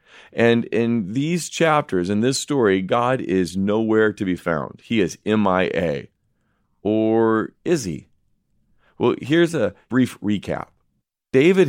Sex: male